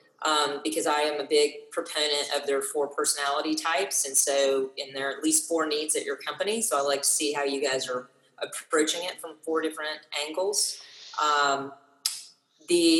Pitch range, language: 140-170 Hz, English